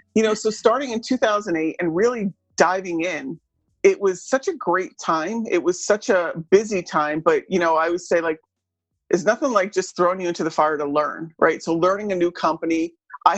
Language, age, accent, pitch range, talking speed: English, 40-59, American, 160-195 Hz, 210 wpm